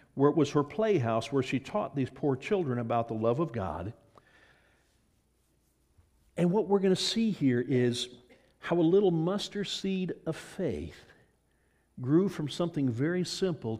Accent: American